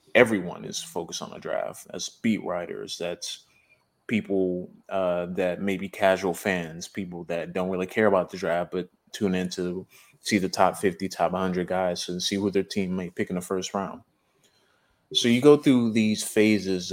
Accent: American